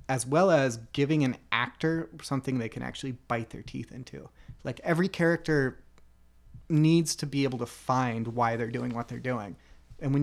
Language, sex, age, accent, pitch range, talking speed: English, male, 30-49, American, 115-150 Hz, 180 wpm